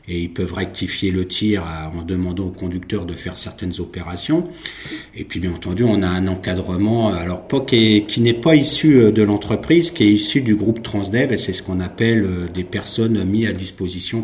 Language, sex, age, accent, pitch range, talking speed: French, male, 50-69, French, 90-110 Hz, 200 wpm